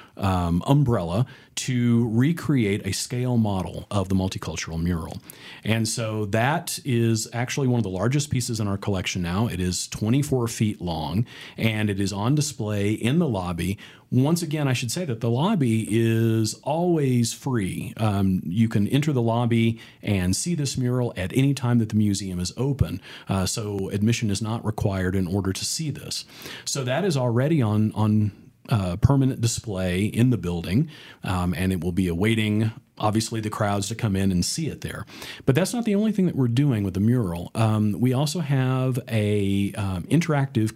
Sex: male